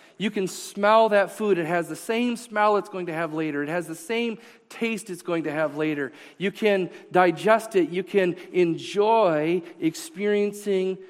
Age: 40-59